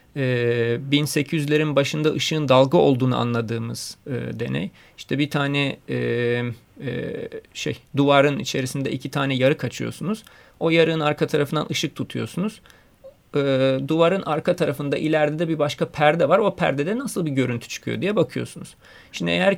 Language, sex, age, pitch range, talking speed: Turkish, male, 40-59, 130-160 Hz, 140 wpm